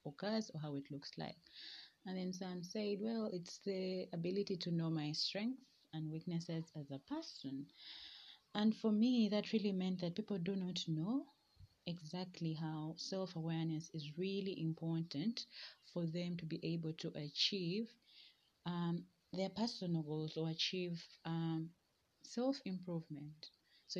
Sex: female